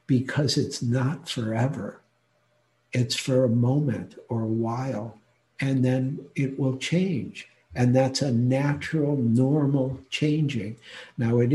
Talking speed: 125 wpm